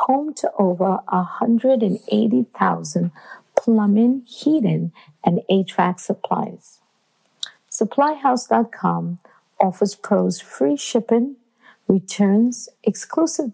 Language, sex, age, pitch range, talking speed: English, female, 50-69, 180-230 Hz, 70 wpm